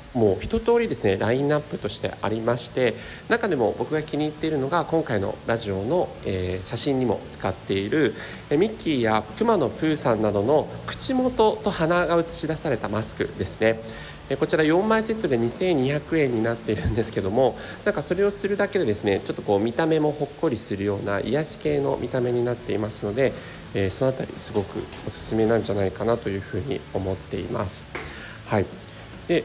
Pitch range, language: 100-150 Hz, Japanese